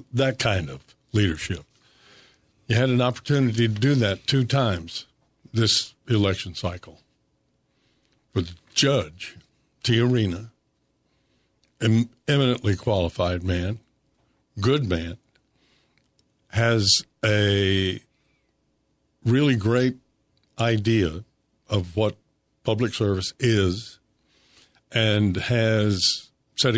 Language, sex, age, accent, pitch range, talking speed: English, male, 60-79, American, 100-125 Hz, 85 wpm